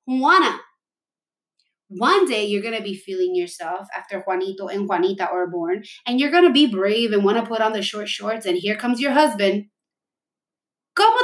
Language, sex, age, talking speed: English, female, 20-39, 185 wpm